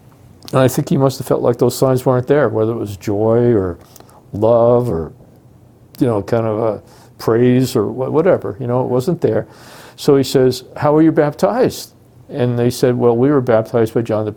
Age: 50-69